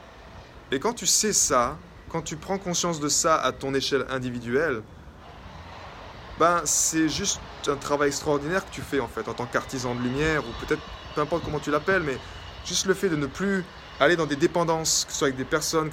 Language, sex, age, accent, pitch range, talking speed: French, male, 20-39, French, 120-165 Hz, 205 wpm